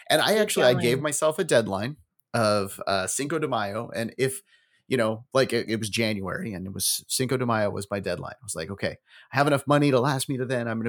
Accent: American